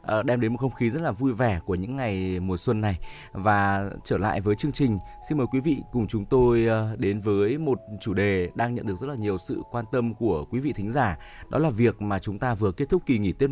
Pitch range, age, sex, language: 100-135 Hz, 20-39, male, Vietnamese